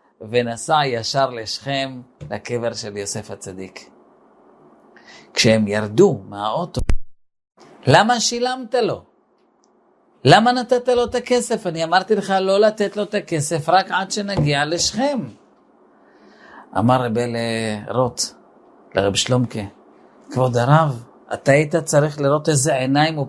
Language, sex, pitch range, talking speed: Hebrew, male, 110-160 Hz, 115 wpm